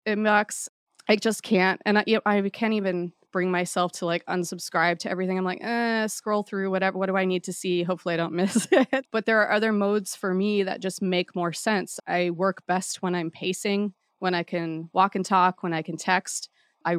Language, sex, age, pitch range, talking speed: English, female, 20-39, 175-210 Hz, 220 wpm